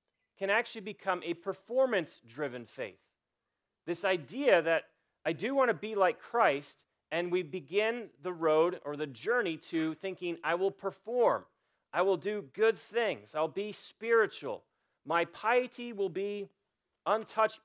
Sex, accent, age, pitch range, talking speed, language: male, American, 40-59, 160-225 Hz, 145 wpm, English